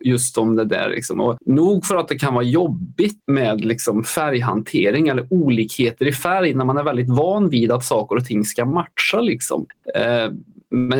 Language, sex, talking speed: English, male, 165 wpm